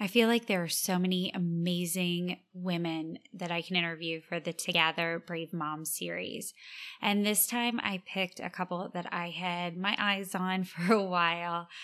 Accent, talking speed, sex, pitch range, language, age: American, 175 wpm, female, 175-195 Hz, English, 20-39